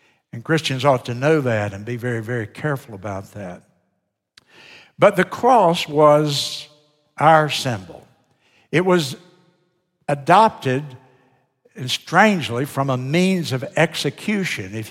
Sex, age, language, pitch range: male, 60-79, English, 130-165 Hz